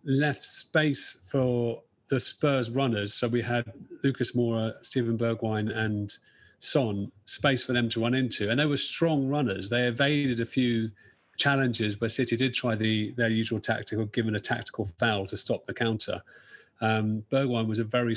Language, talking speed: English, 170 wpm